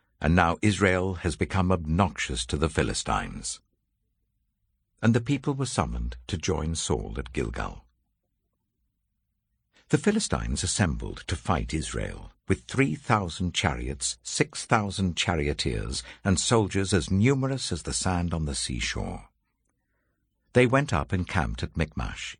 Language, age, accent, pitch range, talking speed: English, 60-79, British, 80-110 Hz, 130 wpm